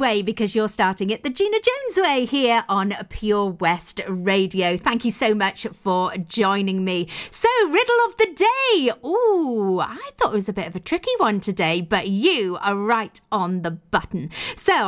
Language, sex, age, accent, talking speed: English, female, 40-59, British, 185 wpm